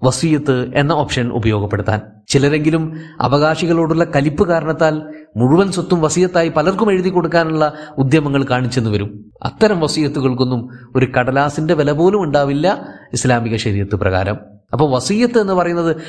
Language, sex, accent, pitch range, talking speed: Malayalam, male, native, 120-165 Hz, 115 wpm